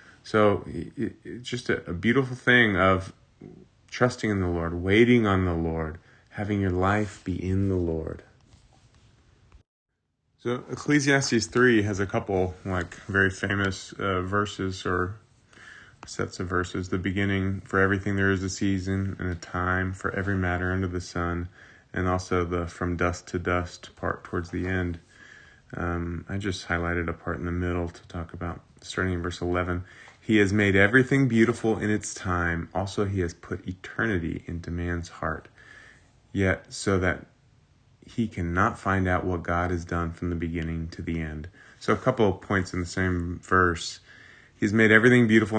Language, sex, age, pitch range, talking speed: English, male, 30-49, 90-105 Hz, 165 wpm